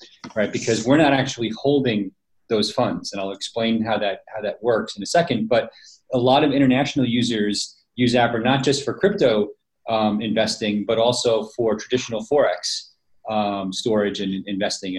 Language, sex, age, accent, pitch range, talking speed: English, male, 30-49, American, 105-135 Hz, 170 wpm